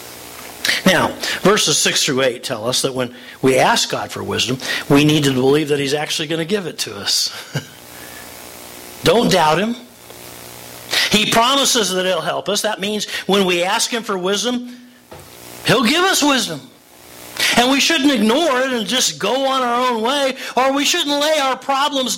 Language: English